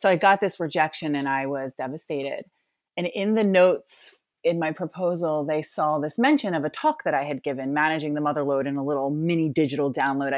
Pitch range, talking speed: 150-195 Hz, 210 wpm